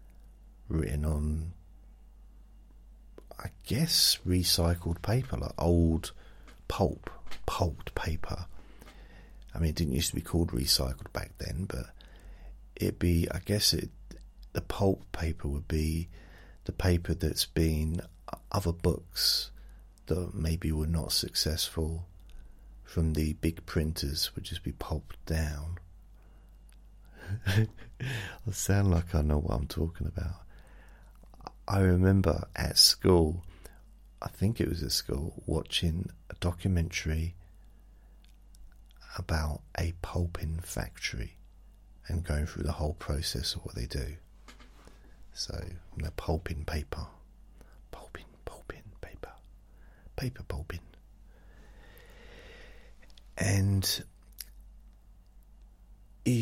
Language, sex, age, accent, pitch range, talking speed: English, male, 40-59, British, 80-95 Hz, 105 wpm